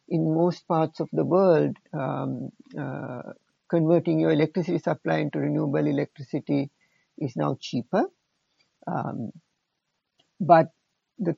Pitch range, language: 145-175 Hz, English